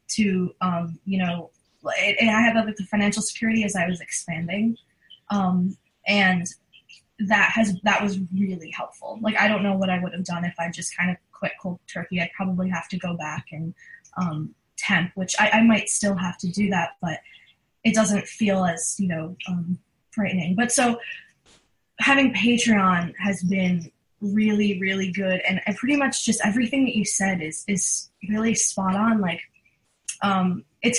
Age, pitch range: 10-29, 180-215 Hz